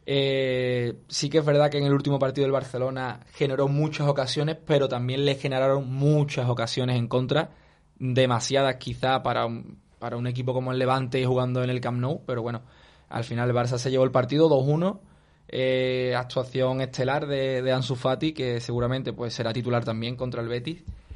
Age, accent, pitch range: 20-39, Spanish, 120-140 Hz